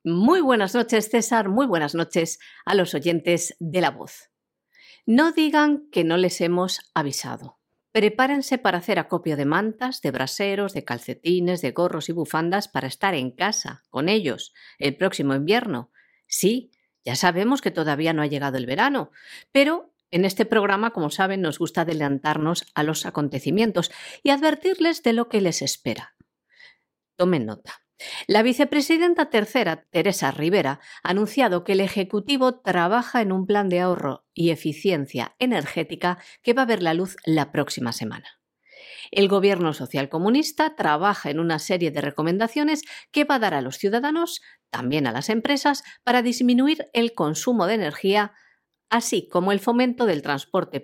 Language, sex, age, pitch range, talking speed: Spanish, female, 50-69, 160-235 Hz, 160 wpm